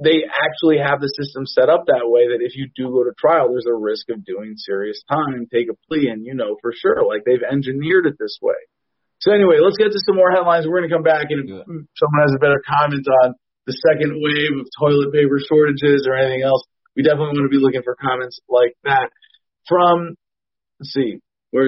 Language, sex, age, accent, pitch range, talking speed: English, male, 40-59, American, 135-180 Hz, 230 wpm